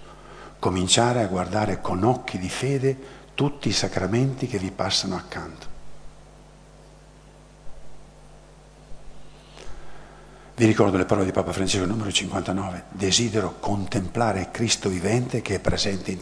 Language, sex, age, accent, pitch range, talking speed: Italian, male, 50-69, native, 95-135 Hz, 115 wpm